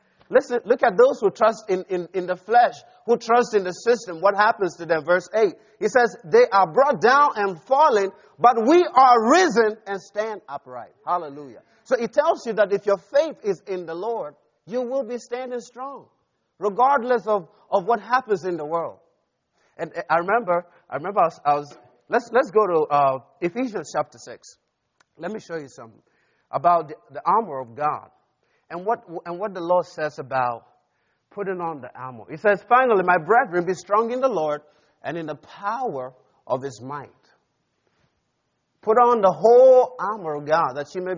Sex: male